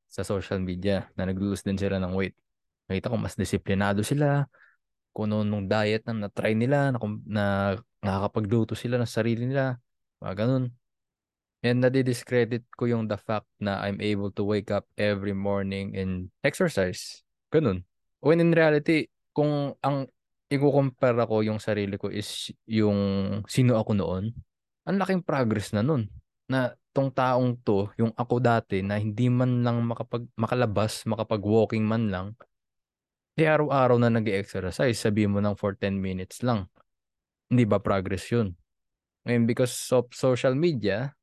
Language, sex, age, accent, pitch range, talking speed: Filipino, male, 20-39, native, 100-125 Hz, 155 wpm